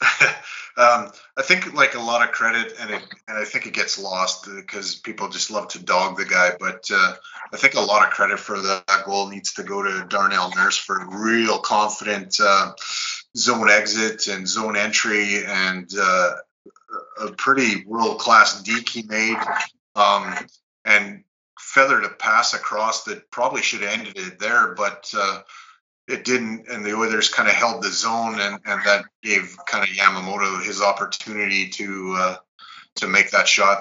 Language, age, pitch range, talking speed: English, 30-49, 95-110 Hz, 175 wpm